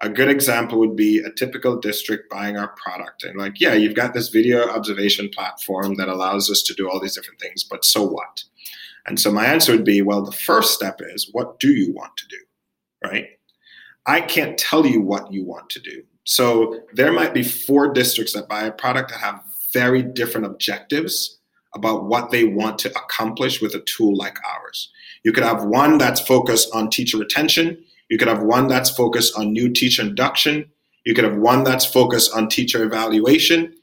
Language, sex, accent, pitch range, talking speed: English, male, American, 110-150 Hz, 200 wpm